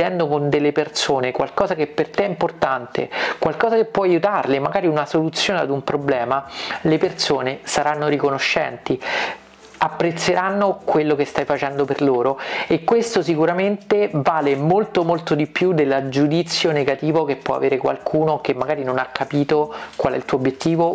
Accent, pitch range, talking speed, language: native, 140-165 Hz, 160 wpm, Italian